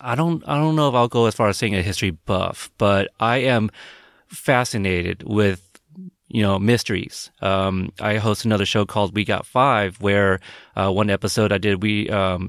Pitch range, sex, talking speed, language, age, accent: 95-115 Hz, male, 190 wpm, English, 30-49, American